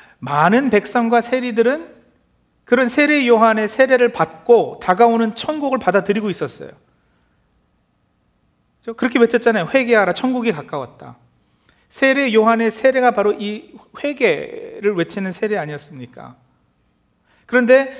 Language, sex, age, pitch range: Korean, male, 40-59, 165-235 Hz